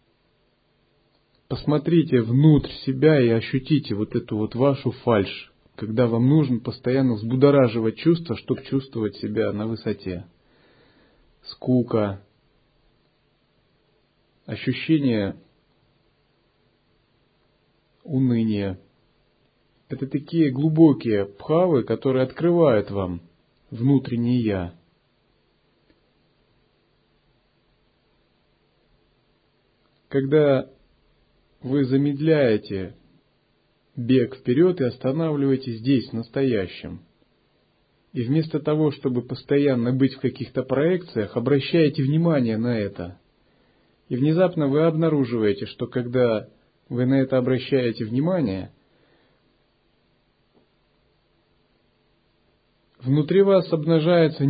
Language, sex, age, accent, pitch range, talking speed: Russian, male, 30-49, native, 115-150 Hz, 75 wpm